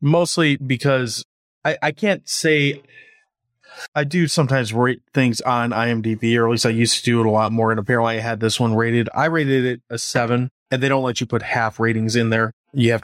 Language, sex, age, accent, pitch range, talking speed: English, male, 20-39, American, 115-135 Hz, 220 wpm